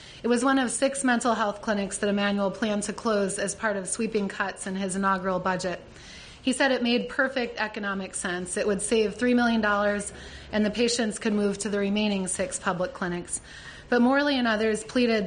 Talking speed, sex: 195 wpm, female